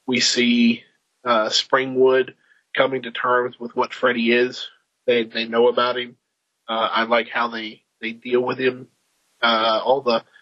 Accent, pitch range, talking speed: American, 115-130 Hz, 160 wpm